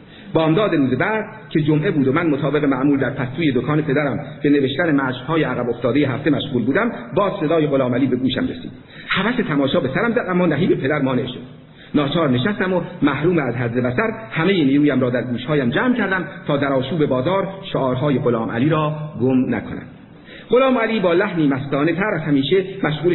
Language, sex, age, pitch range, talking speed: Persian, male, 50-69, 135-190 Hz, 185 wpm